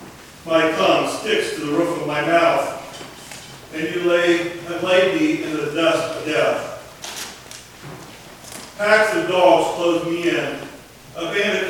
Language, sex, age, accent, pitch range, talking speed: English, male, 40-59, American, 150-190 Hz, 145 wpm